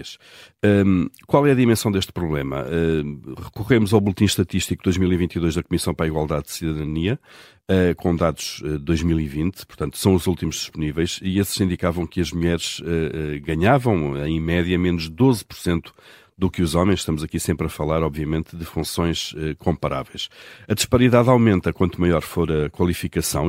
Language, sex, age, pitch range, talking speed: Portuguese, male, 50-69, 75-90 Hz, 155 wpm